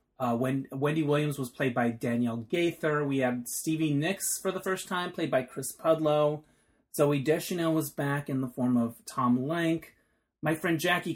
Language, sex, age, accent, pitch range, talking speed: English, male, 30-49, American, 130-165 Hz, 185 wpm